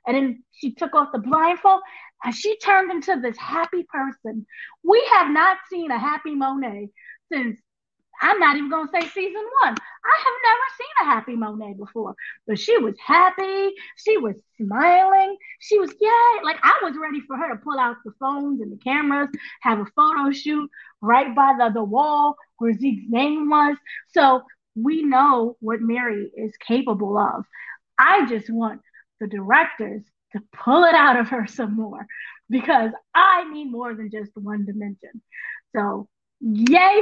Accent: American